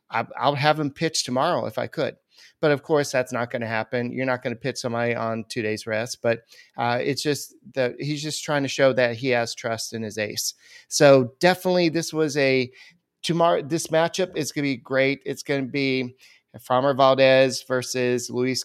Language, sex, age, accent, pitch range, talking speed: English, male, 30-49, American, 125-155 Hz, 205 wpm